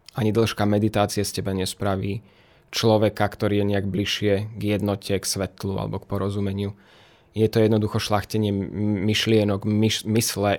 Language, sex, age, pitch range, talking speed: Slovak, male, 20-39, 100-115 Hz, 135 wpm